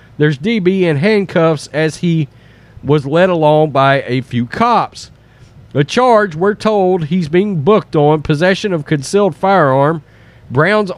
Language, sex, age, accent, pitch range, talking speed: English, male, 40-59, American, 135-195 Hz, 140 wpm